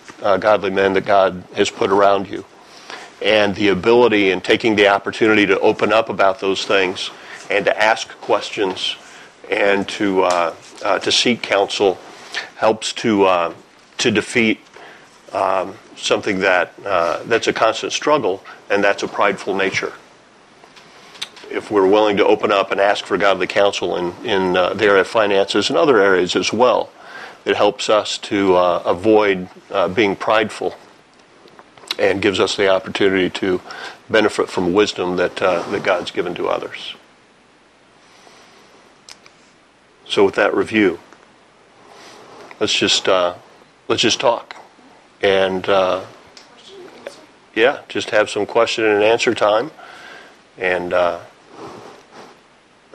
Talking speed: 135 wpm